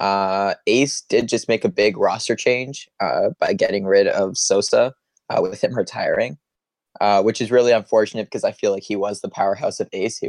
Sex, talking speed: male, 205 wpm